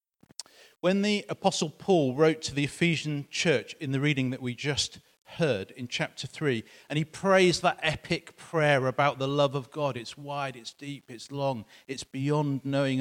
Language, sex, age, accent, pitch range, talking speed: English, male, 40-59, British, 135-200 Hz, 180 wpm